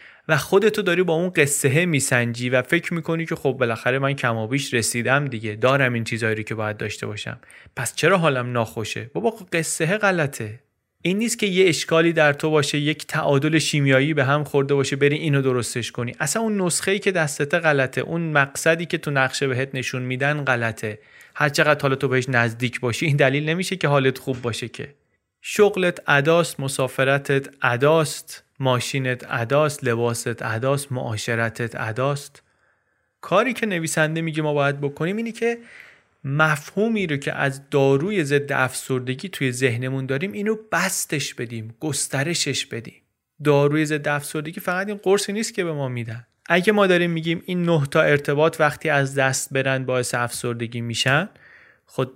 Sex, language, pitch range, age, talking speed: male, Persian, 130-165 Hz, 30-49, 160 wpm